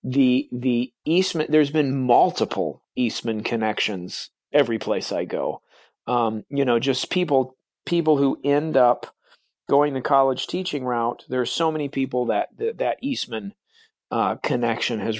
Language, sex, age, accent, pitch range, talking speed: English, male, 40-59, American, 115-145 Hz, 145 wpm